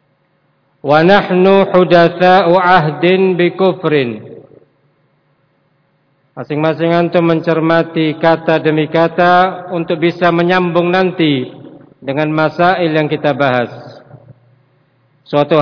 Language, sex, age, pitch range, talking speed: Indonesian, male, 50-69, 140-180 Hz, 75 wpm